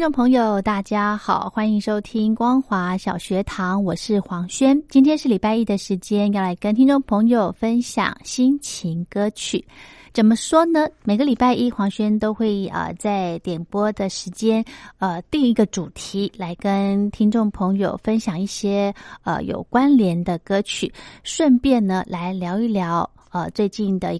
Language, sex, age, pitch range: Chinese, female, 30-49, 185-225 Hz